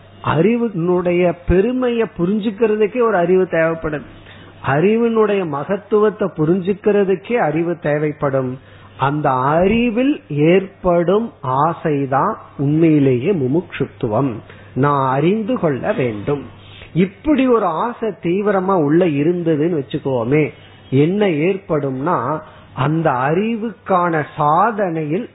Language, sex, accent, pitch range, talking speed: Tamil, male, native, 135-190 Hz, 80 wpm